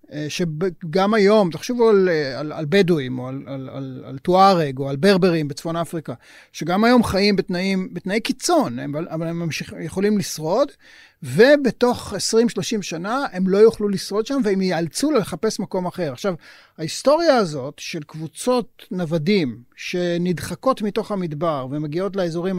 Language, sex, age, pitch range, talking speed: Hebrew, male, 30-49, 165-220 Hz, 145 wpm